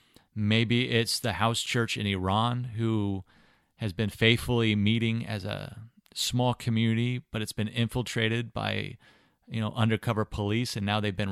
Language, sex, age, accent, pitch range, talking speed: English, male, 30-49, American, 105-120 Hz, 155 wpm